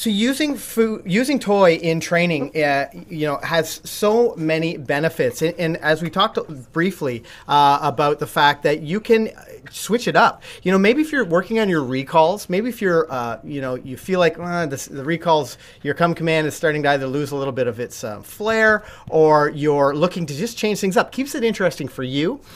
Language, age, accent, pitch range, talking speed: English, 30-49, American, 140-195 Hz, 215 wpm